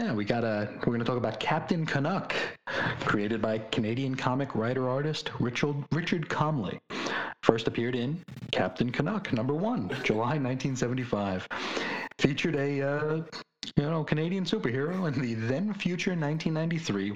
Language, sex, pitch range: English, male, 115-165 Hz